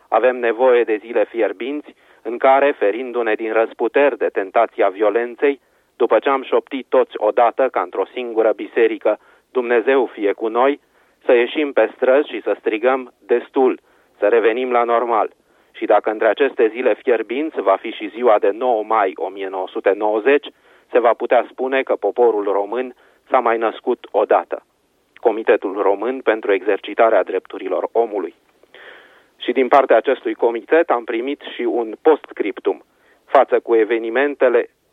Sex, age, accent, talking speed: male, 30-49, native, 145 wpm